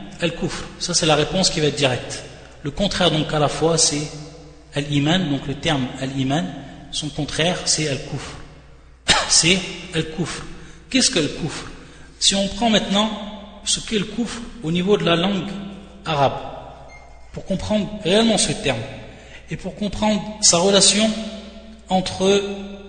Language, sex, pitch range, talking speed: French, male, 145-185 Hz, 145 wpm